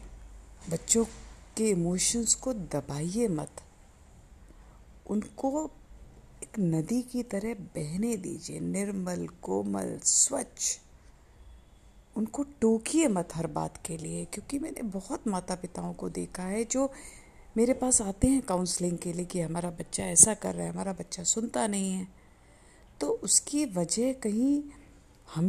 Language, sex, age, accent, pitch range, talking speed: Hindi, female, 50-69, native, 160-225 Hz, 130 wpm